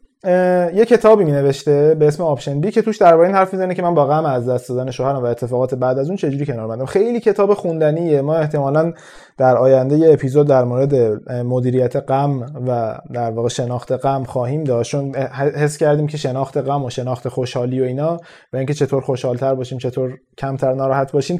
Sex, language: male, Persian